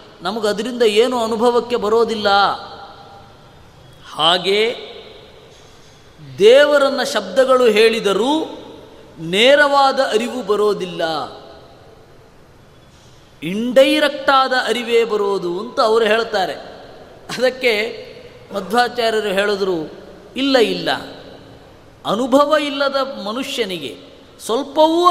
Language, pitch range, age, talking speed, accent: Kannada, 205-275 Hz, 20-39, 65 wpm, native